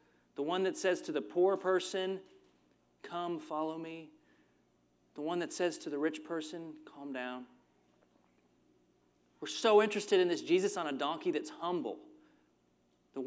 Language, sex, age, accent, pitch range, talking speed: English, male, 30-49, American, 105-155 Hz, 150 wpm